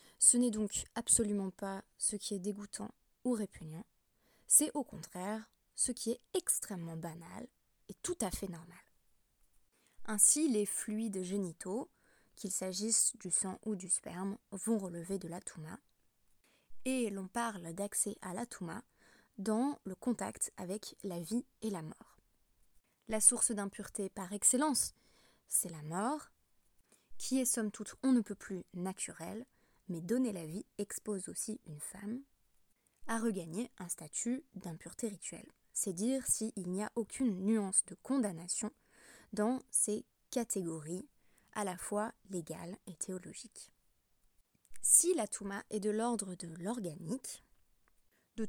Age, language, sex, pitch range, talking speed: 20-39, French, female, 185-230 Hz, 140 wpm